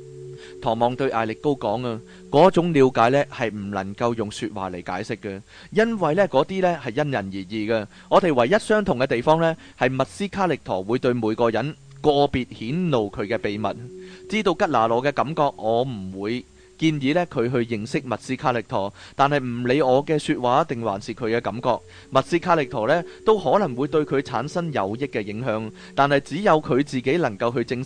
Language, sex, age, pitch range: Chinese, male, 30-49, 115-155 Hz